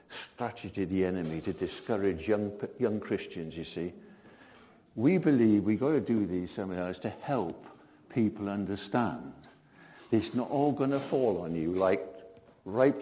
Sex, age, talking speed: male, 60-79, 150 wpm